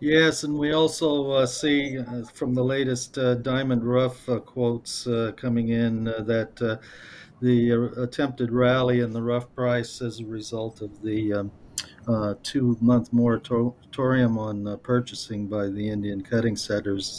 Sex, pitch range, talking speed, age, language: male, 105-125 Hz, 155 wpm, 50-69, English